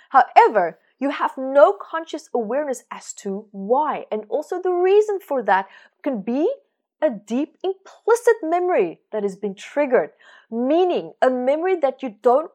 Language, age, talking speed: English, 30-49, 150 wpm